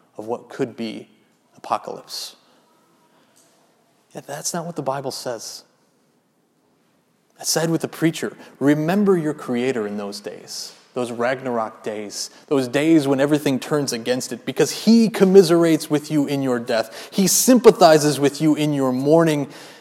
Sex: male